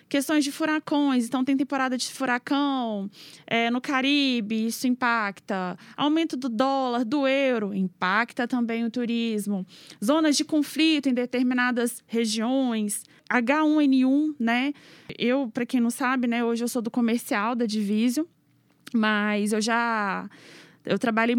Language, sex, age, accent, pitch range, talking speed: Portuguese, female, 20-39, Brazilian, 225-270 Hz, 135 wpm